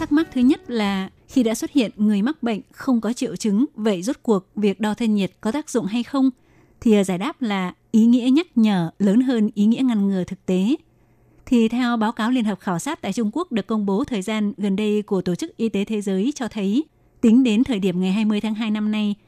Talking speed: 250 wpm